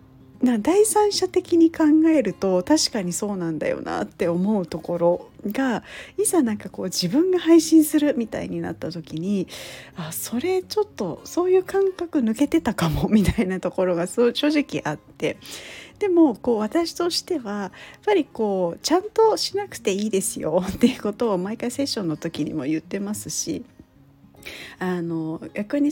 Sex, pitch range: female, 180-265 Hz